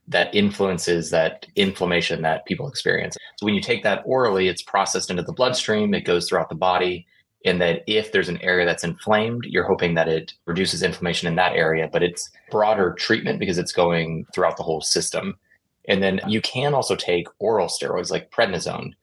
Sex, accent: male, American